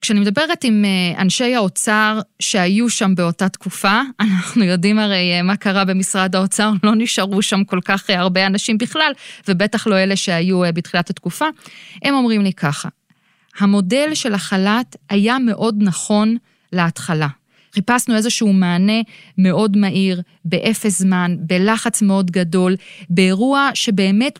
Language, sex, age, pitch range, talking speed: Hebrew, female, 20-39, 180-225 Hz, 130 wpm